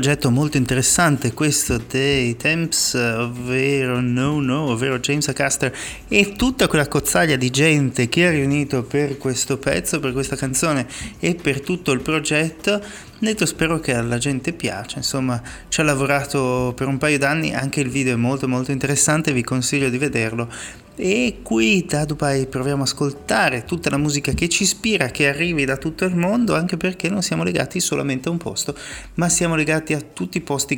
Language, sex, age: Italian, male, 30-49